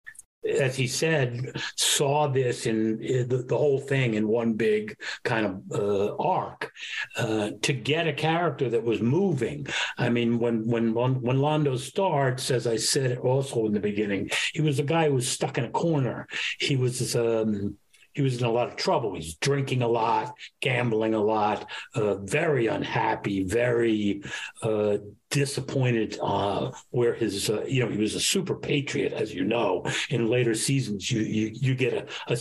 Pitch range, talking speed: 115-150 Hz, 175 wpm